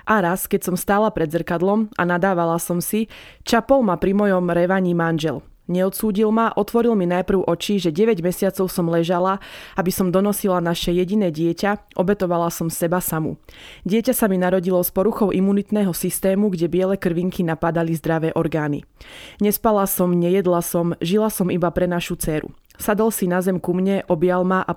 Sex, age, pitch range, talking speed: female, 20-39, 175-205 Hz, 170 wpm